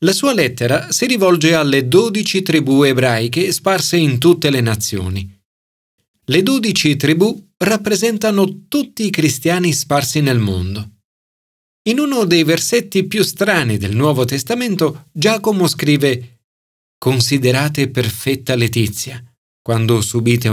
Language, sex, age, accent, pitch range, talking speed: Italian, male, 40-59, native, 120-190 Hz, 115 wpm